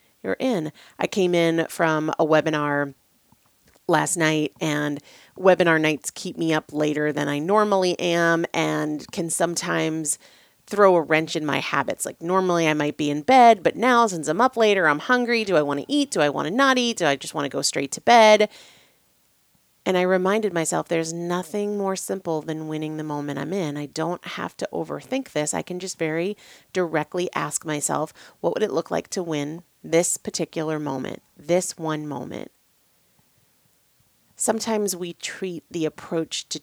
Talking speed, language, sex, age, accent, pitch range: 180 wpm, English, female, 30-49, American, 150-190 Hz